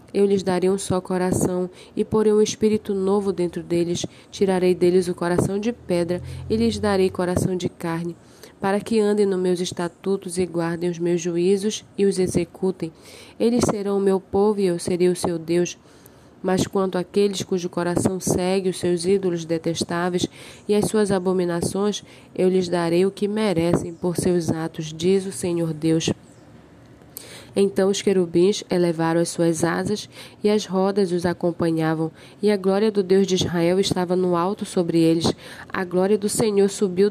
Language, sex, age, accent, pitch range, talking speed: Portuguese, female, 20-39, Brazilian, 175-200 Hz, 170 wpm